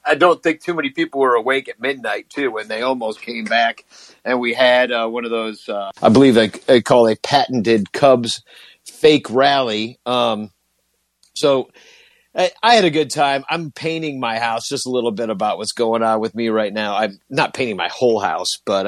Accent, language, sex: American, English, male